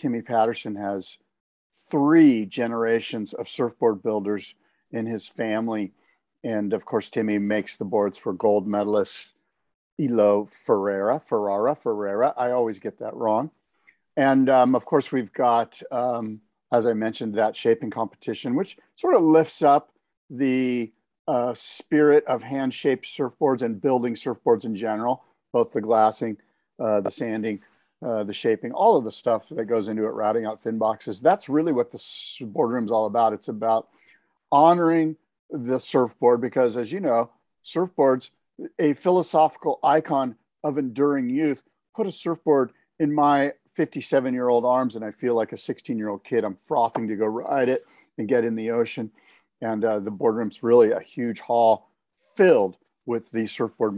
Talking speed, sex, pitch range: 155 wpm, male, 110-140 Hz